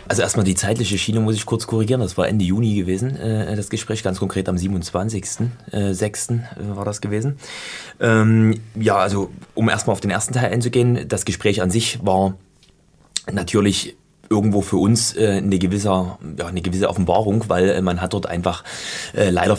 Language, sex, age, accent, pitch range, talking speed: German, male, 20-39, German, 90-105 Hz, 170 wpm